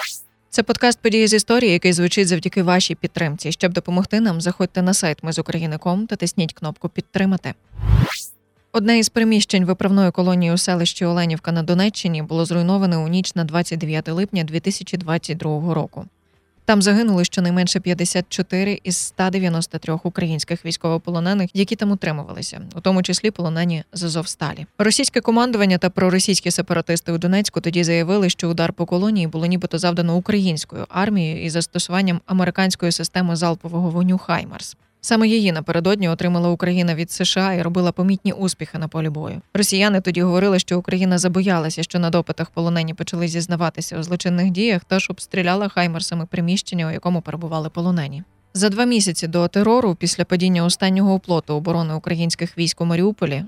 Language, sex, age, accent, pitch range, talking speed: Ukrainian, female, 20-39, native, 165-190 Hz, 150 wpm